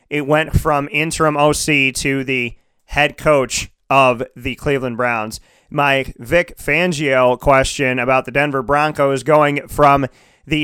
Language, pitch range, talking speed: English, 130-170 Hz, 135 wpm